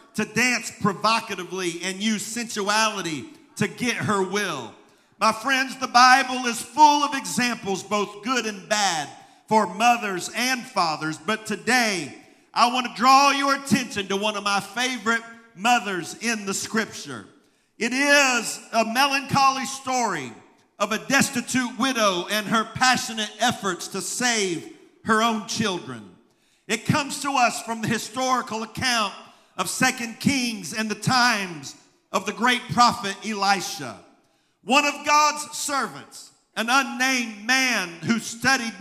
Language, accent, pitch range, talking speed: English, American, 210-260 Hz, 140 wpm